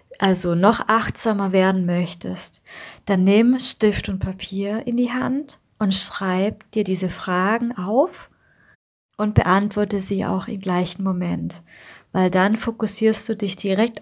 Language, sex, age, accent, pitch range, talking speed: German, female, 30-49, German, 190-225 Hz, 135 wpm